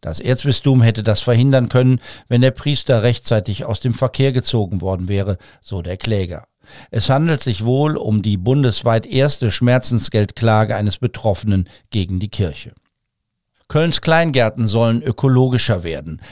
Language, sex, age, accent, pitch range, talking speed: German, male, 50-69, German, 105-130 Hz, 140 wpm